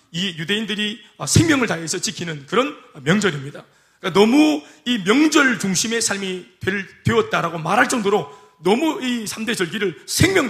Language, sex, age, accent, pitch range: Korean, male, 30-49, native, 170-220 Hz